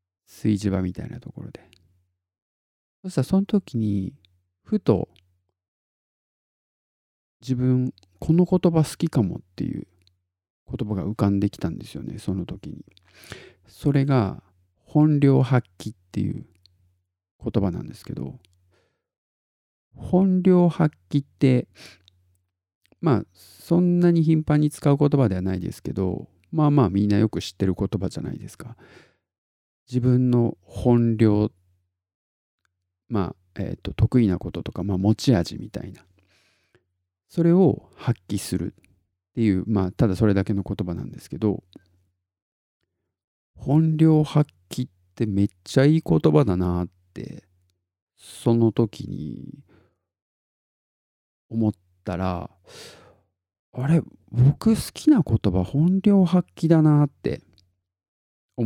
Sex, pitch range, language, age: male, 90-135 Hz, Japanese, 50-69